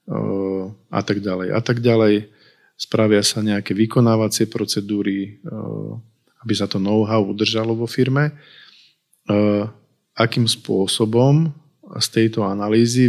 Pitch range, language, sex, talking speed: 100-115 Hz, Slovak, male, 105 wpm